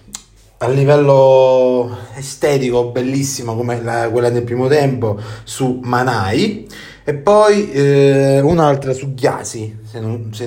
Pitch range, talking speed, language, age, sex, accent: 110-135 Hz, 115 wpm, Italian, 30-49, male, native